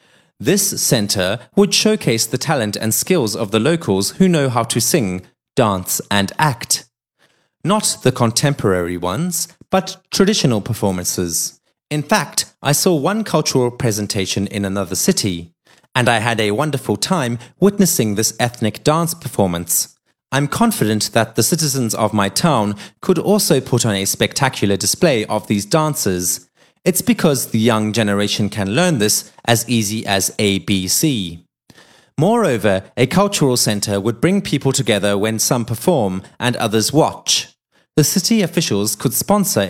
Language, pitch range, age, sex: Chinese, 105-155 Hz, 30-49, male